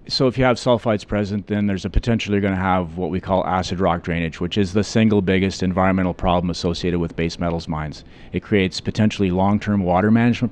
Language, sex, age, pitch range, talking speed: English, male, 40-59, 95-110 Hz, 215 wpm